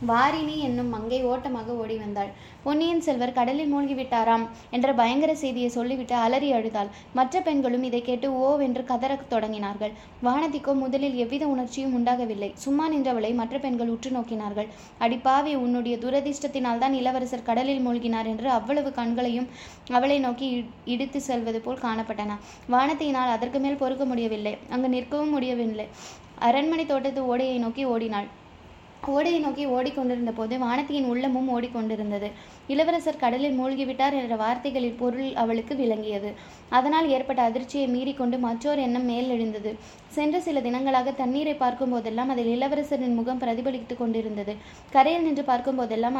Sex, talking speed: female, 130 wpm